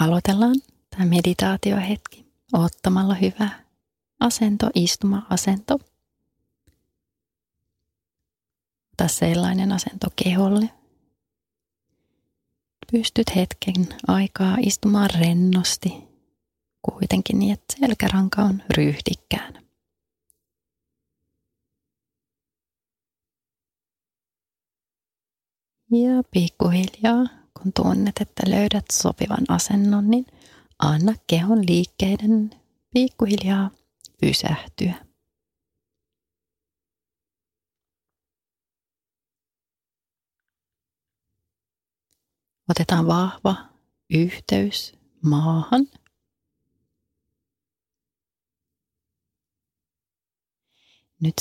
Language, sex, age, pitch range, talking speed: Finnish, female, 30-49, 150-210 Hz, 45 wpm